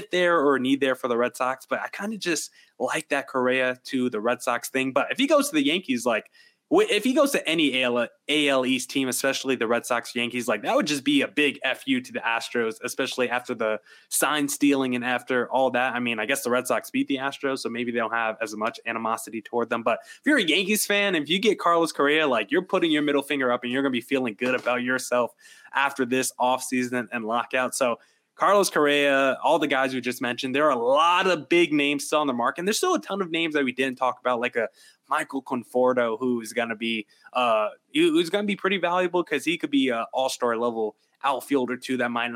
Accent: American